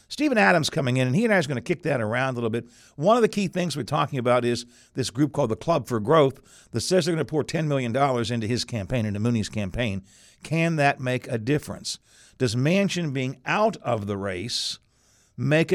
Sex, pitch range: male, 115-150 Hz